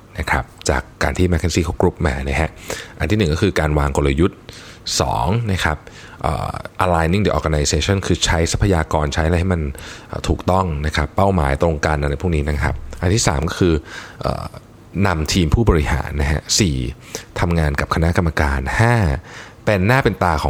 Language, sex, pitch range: Thai, male, 75-100 Hz